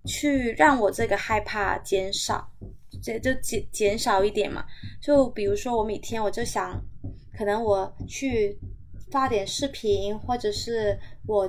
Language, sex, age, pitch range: Chinese, female, 20-39, 195-240 Hz